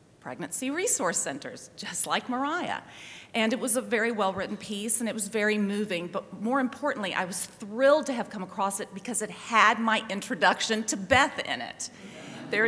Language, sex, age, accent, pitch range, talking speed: English, female, 40-59, American, 175-220 Hz, 190 wpm